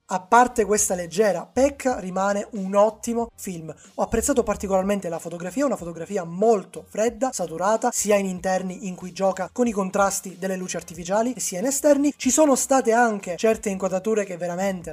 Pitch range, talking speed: 185-235 Hz, 170 wpm